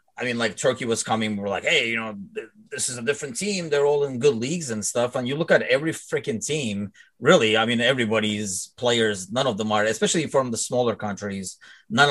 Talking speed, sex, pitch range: 230 wpm, male, 100-130 Hz